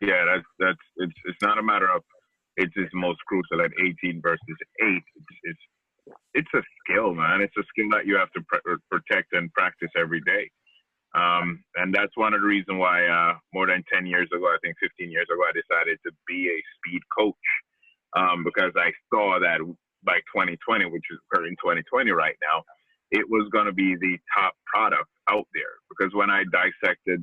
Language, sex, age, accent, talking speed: English, male, 30-49, American, 195 wpm